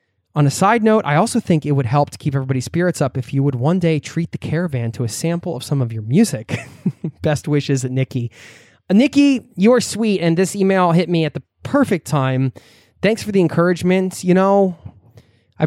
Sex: male